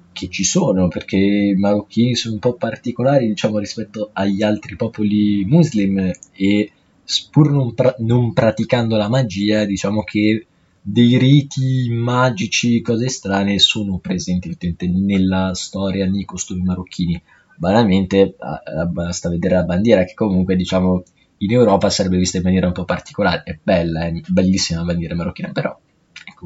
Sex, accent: male, native